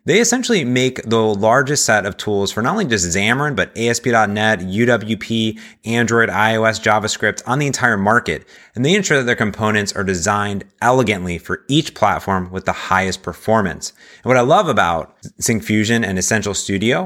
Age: 30-49